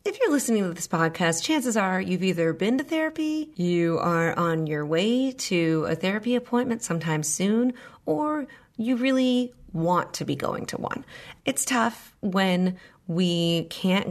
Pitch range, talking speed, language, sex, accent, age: 170-235 Hz, 160 wpm, English, female, American, 30-49